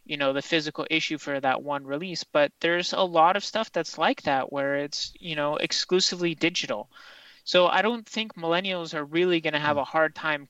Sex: male